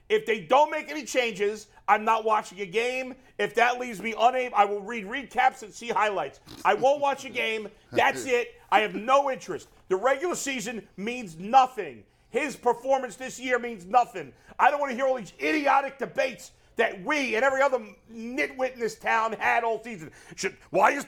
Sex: male